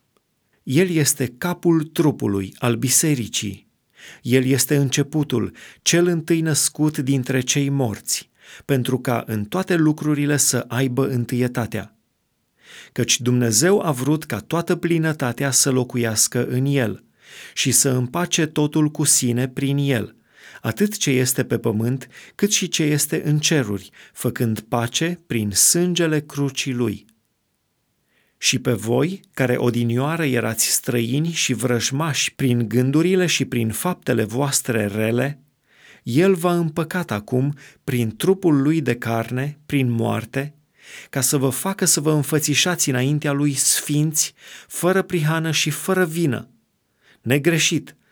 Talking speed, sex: 125 wpm, male